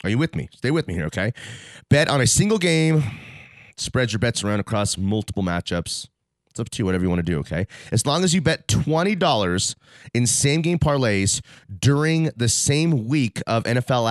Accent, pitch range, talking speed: American, 90-125 Hz, 195 wpm